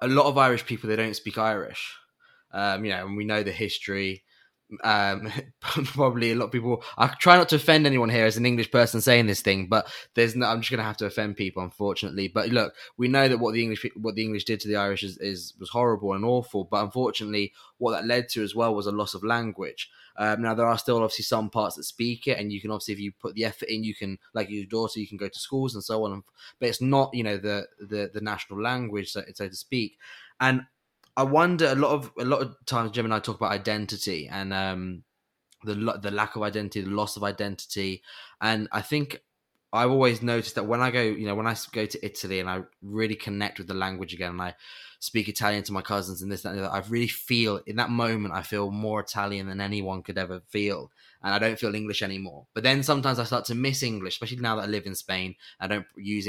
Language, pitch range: English, 100-120 Hz